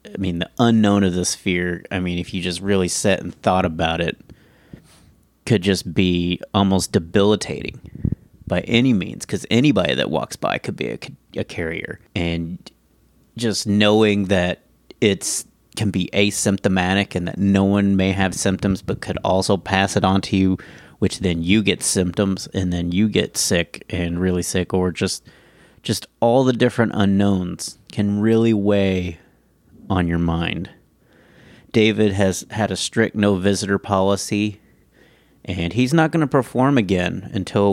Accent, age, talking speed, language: American, 30-49, 160 wpm, English